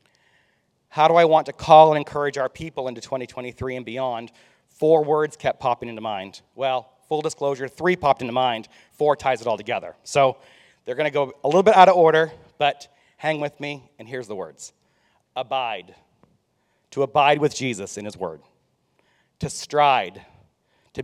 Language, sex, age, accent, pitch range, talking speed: English, male, 40-59, American, 125-155 Hz, 175 wpm